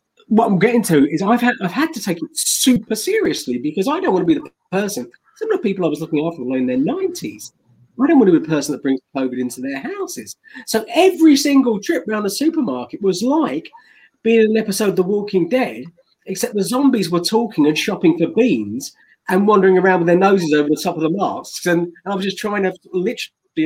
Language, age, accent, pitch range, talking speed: English, 40-59, British, 170-265 Hz, 235 wpm